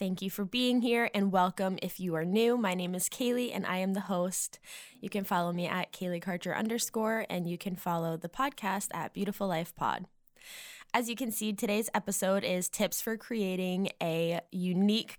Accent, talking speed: American, 195 wpm